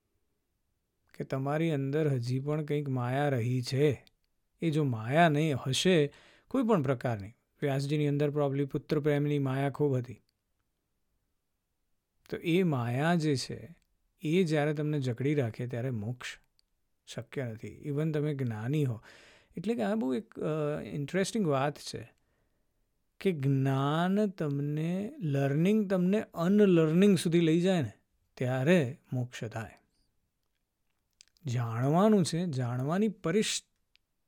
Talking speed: 105 wpm